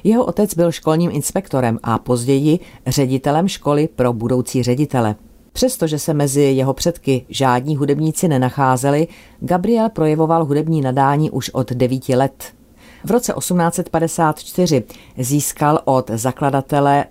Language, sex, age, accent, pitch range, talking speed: Czech, female, 40-59, native, 125-155 Hz, 120 wpm